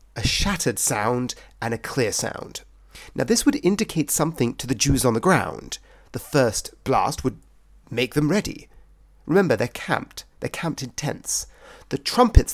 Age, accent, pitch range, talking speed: 30-49, British, 105-145 Hz, 165 wpm